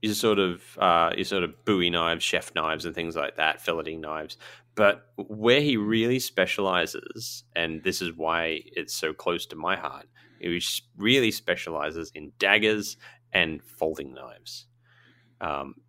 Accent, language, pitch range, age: Australian, English, 85-115 Hz, 30-49